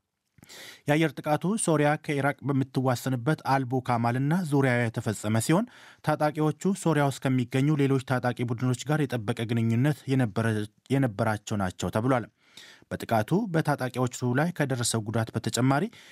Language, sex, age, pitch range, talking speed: Amharic, male, 30-49, 120-155 Hz, 95 wpm